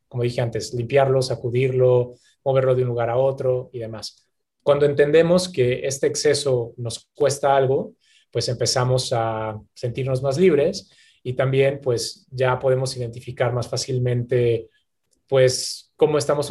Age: 20-39